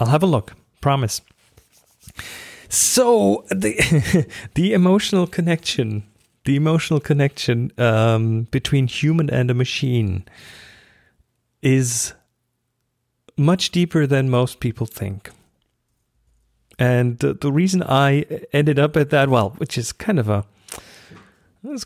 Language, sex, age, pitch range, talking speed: English, male, 40-59, 120-155 Hz, 115 wpm